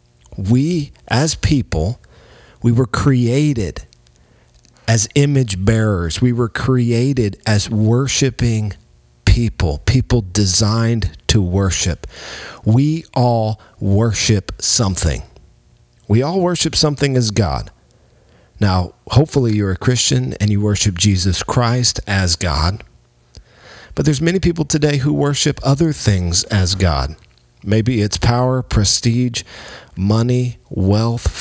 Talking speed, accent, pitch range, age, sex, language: 110 wpm, American, 95-125 Hz, 40-59, male, English